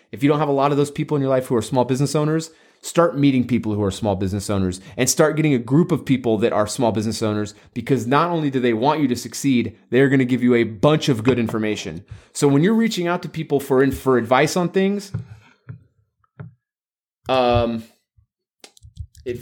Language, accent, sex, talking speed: English, American, male, 220 wpm